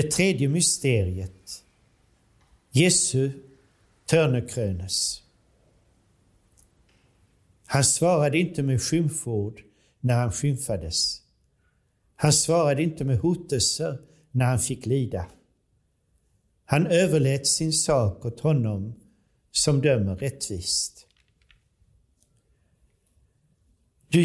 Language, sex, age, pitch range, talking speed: Swedish, male, 60-79, 110-150 Hz, 80 wpm